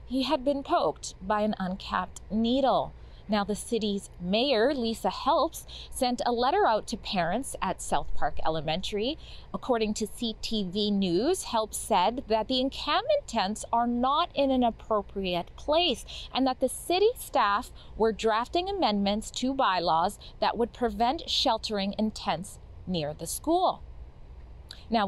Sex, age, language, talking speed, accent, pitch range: female, 30-49, English, 145 wpm, American, 200-275 Hz